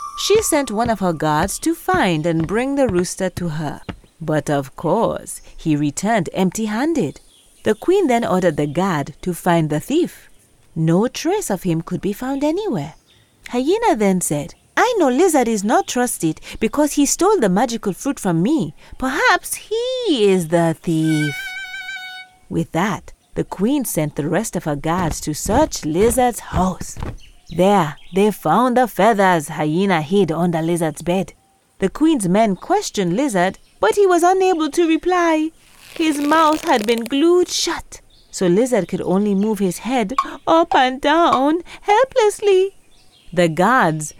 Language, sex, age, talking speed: English, female, 30-49, 155 wpm